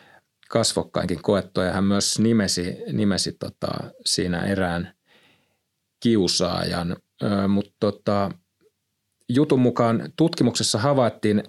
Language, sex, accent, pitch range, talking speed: Finnish, male, native, 95-115 Hz, 80 wpm